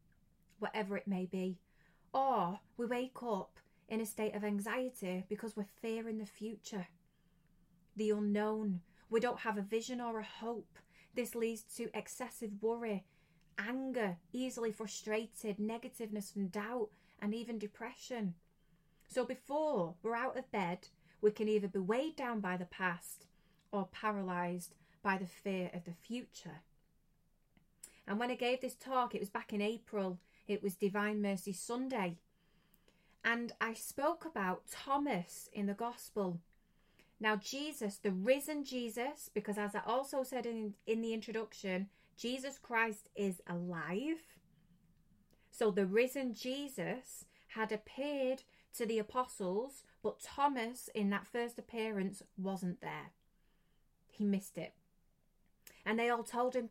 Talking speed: 140 wpm